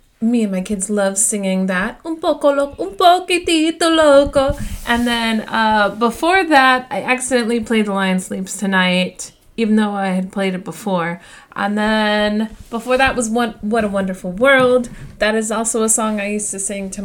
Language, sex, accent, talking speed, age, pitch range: English, female, American, 185 wpm, 30-49, 195-255 Hz